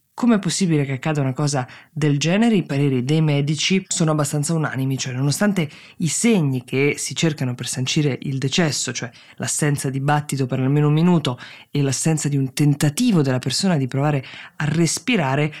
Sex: female